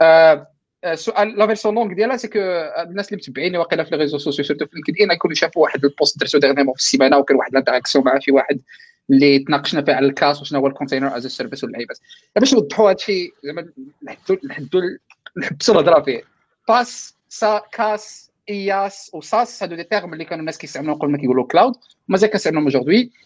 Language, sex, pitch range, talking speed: Arabic, male, 145-205 Hz, 195 wpm